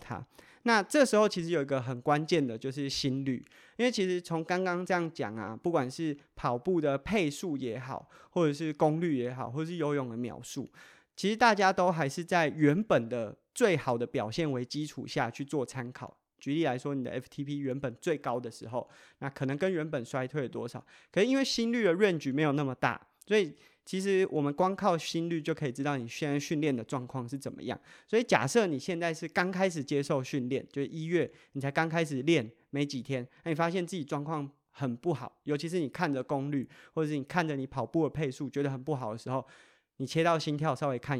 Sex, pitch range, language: male, 135-175 Hz, Chinese